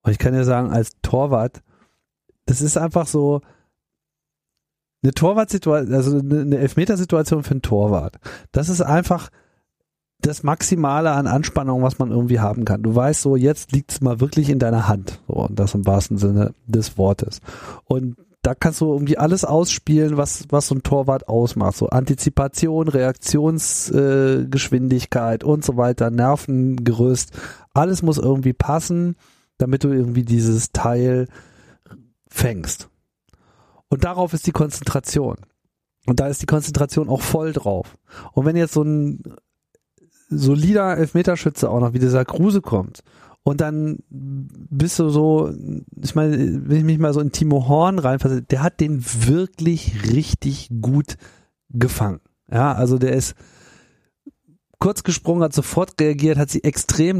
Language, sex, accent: German, male, German